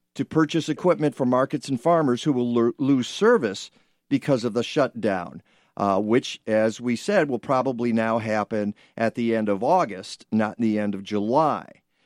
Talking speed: 170 wpm